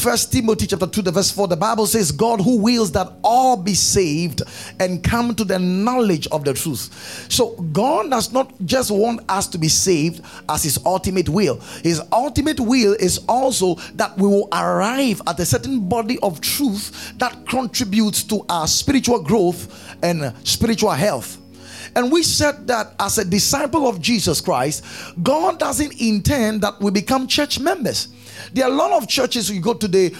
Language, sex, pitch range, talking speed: English, male, 180-255 Hz, 180 wpm